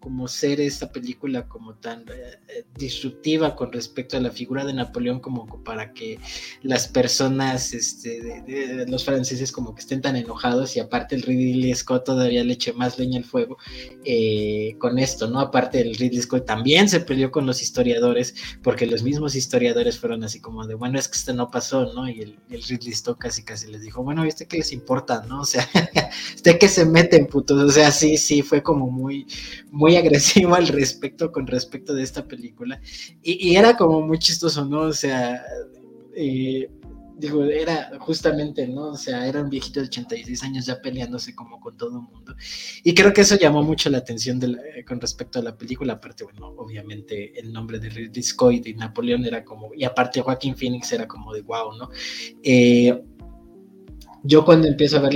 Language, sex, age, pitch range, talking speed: Spanish, male, 20-39, 120-150 Hz, 195 wpm